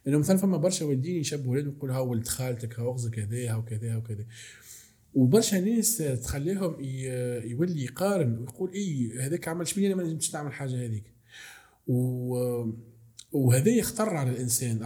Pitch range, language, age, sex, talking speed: 120-160 Hz, Arabic, 40-59, male, 145 wpm